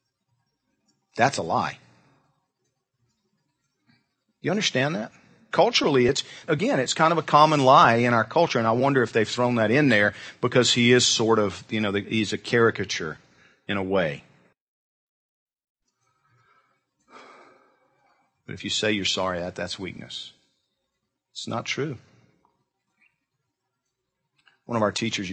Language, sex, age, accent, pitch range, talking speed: English, male, 40-59, American, 100-135 Hz, 135 wpm